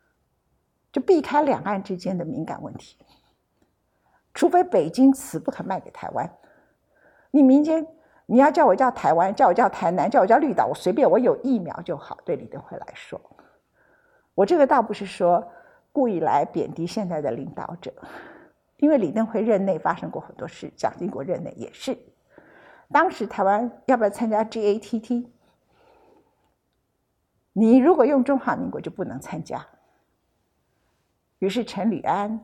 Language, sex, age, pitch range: Chinese, female, 50-69, 200-295 Hz